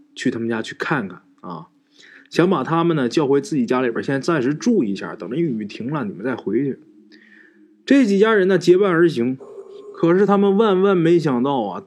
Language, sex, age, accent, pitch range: Chinese, male, 20-39, native, 155-230 Hz